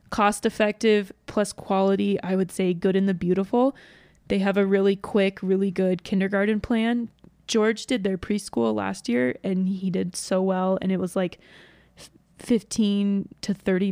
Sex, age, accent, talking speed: female, 20-39, American, 160 wpm